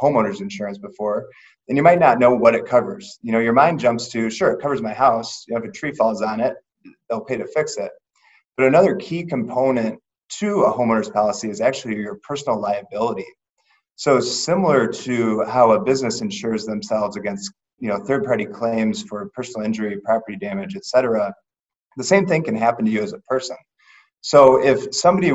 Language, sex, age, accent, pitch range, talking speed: English, male, 30-49, American, 110-140 Hz, 195 wpm